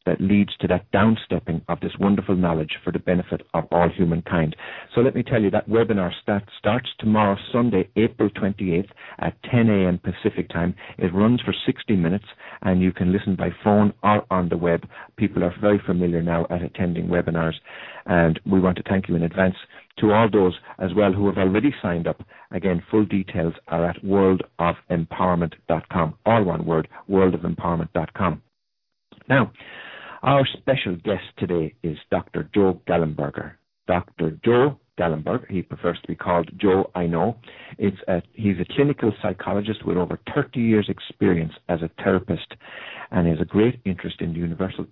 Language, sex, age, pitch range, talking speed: English, male, 50-69, 85-105 Hz, 165 wpm